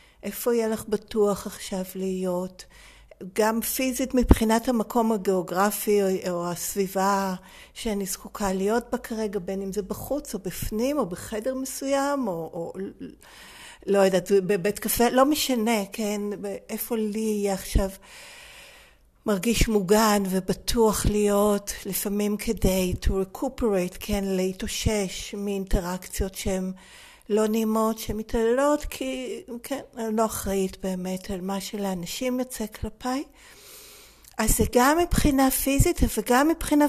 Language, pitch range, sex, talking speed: Hebrew, 190-240 Hz, female, 105 wpm